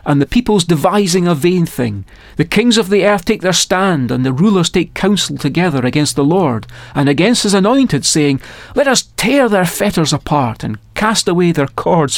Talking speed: 195 wpm